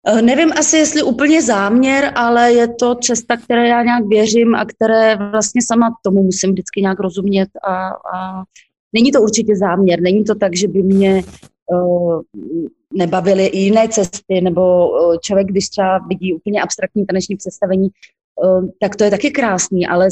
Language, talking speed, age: Slovak, 160 wpm, 30-49